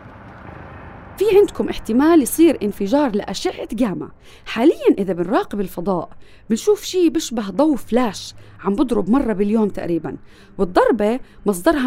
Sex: female